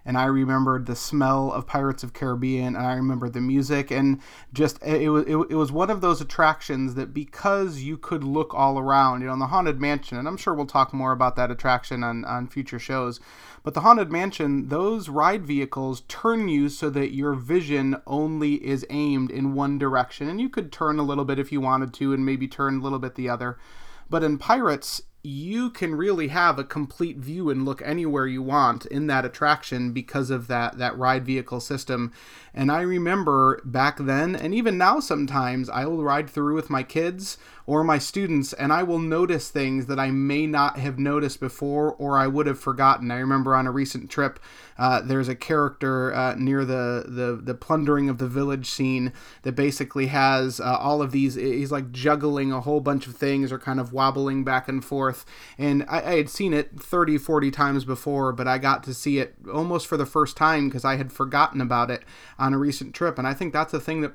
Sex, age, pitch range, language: male, 30-49, 130-150 Hz, English